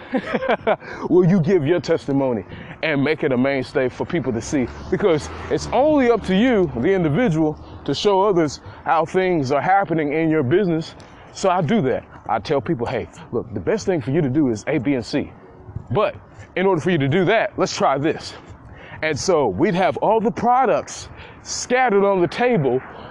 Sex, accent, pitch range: male, American, 145-200 Hz